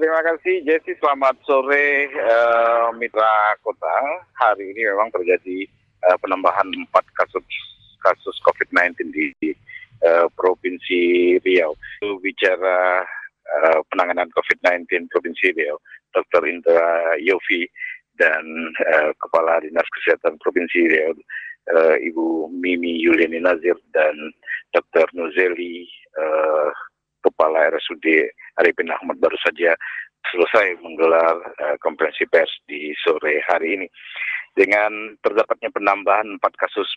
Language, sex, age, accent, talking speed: Indonesian, male, 50-69, native, 110 wpm